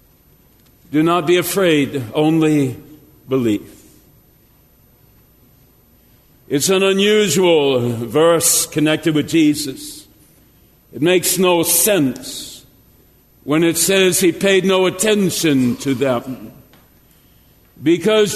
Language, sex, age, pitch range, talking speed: English, male, 60-79, 160-205 Hz, 90 wpm